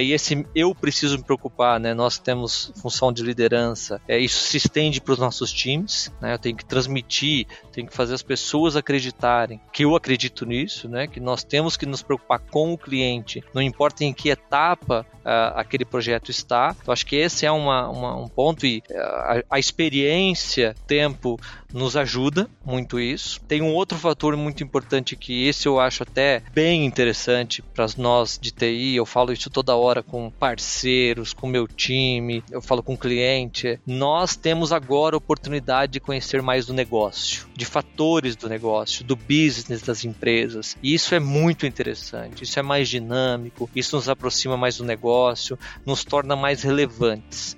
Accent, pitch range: Brazilian, 120-145 Hz